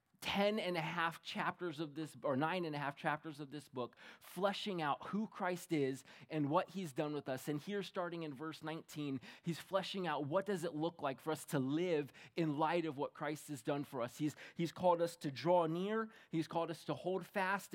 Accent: American